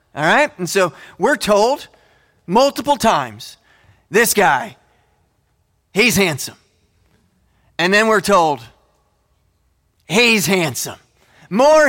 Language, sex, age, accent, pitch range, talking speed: English, male, 30-49, American, 135-215 Hz, 95 wpm